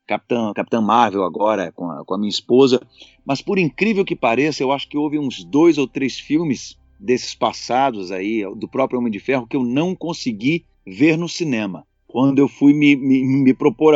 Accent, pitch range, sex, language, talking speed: Brazilian, 120-145 Hz, male, Portuguese, 200 wpm